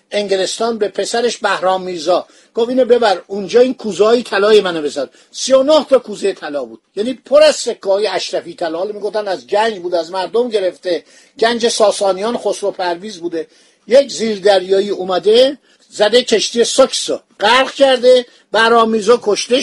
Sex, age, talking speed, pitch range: male, 50-69, 145 wpm, 195-250 Hz